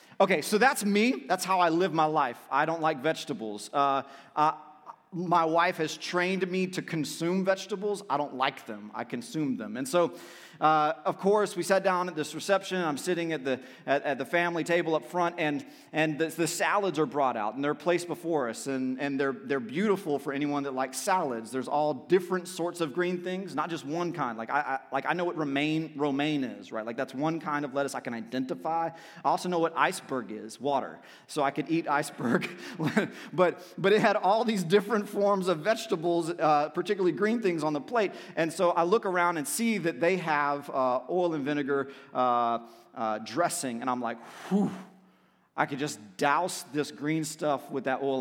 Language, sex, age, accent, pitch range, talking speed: English, male, 30-49, American, 140-185 Hz, 210 wpm